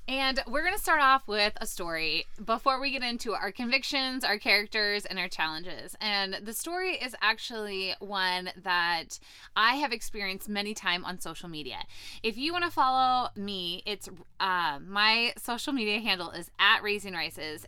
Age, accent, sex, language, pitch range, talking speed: 20-39, American, female, English, 190-265 Hz, 175 wpm